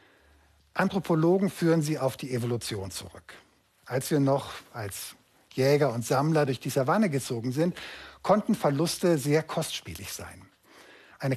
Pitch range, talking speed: 125-165 Hz, 130 wpm